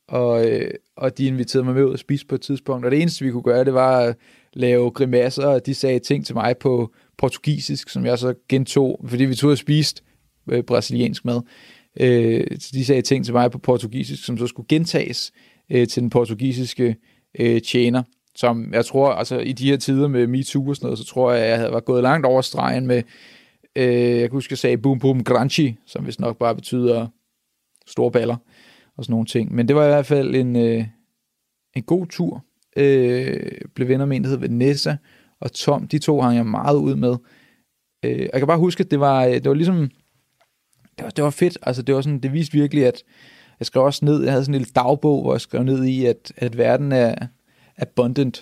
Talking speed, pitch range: 220 wpm, 120-140 Hz